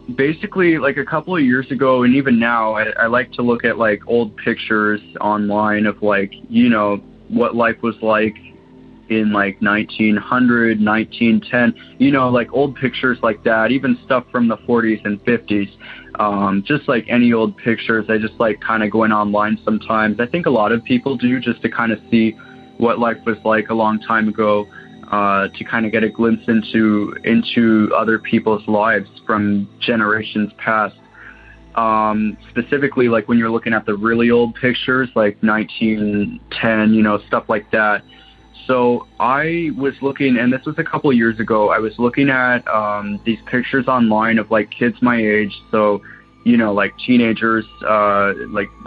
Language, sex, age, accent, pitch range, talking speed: English, male, 20-39, American, 105-120 Hz, 180 wpm